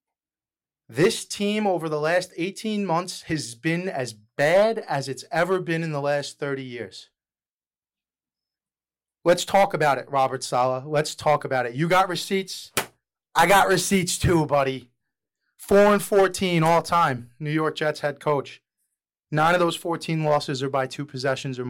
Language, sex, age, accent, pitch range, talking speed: English, male, 30-49, American, 130-170 Hz, 160 wpm